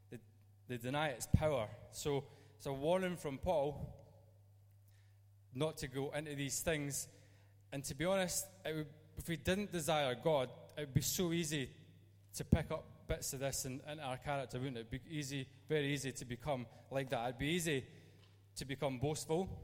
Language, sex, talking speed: English, male, 170 wpm